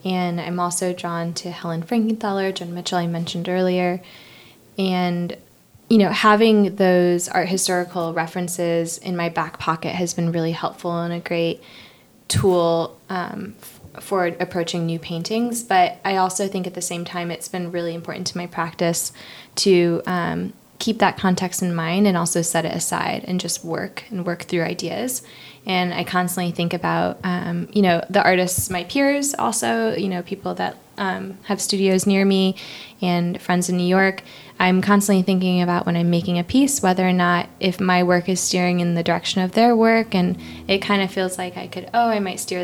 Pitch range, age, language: 175-190 Hz, 20-39, English